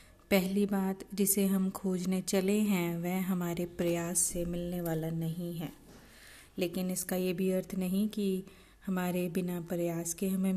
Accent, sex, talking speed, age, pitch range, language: native, female, 155 wpm, 30-49, 175-195 Hz, Hindi